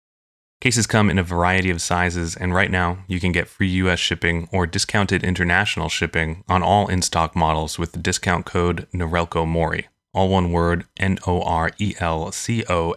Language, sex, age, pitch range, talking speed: English, male, 30-49, 85-95 Hz, 180 wpm